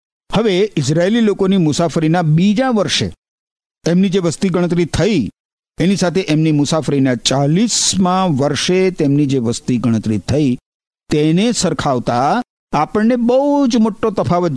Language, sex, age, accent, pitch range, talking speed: Gujarati, male, 50-69, native, 145-195 Hz, 120 wpm